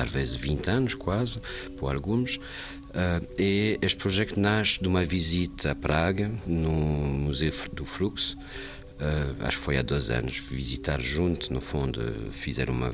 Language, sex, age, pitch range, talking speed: Portuguese, male, 50-69, 70-95 Hz, 150 wpm